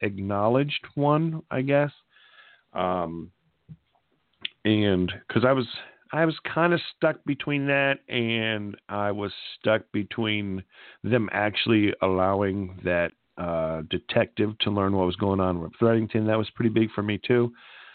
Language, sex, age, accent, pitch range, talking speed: English, male, 50-69, American, 95-130 Hz, 140 wpm